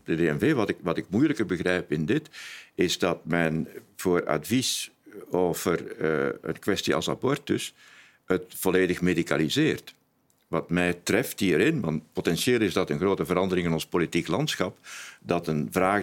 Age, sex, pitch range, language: 50-69, male, 85-100 Hz, Dutch